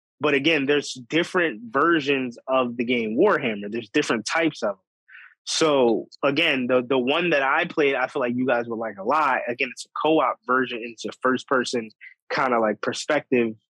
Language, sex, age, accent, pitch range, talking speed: English, male, 20-39, American, 120-145 Hz, 190 wpm